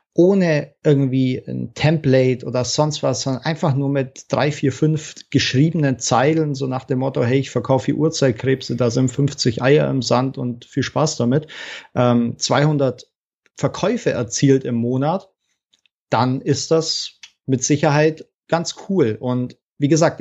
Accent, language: German, German